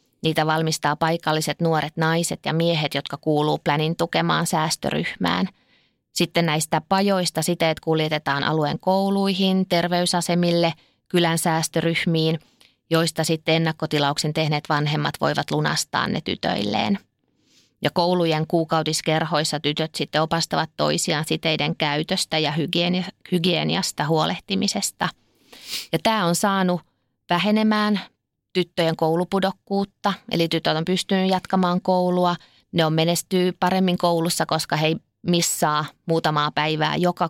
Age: 20-39